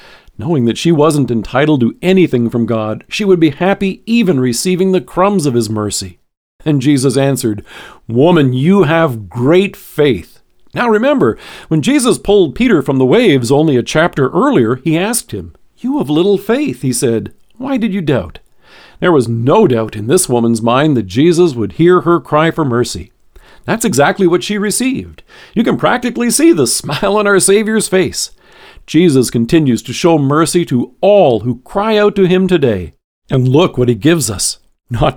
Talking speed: 180 wpm